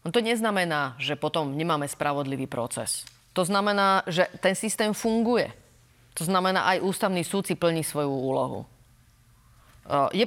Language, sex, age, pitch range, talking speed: Slovak, female, 30-49, 145-185 Hz, 140 wpm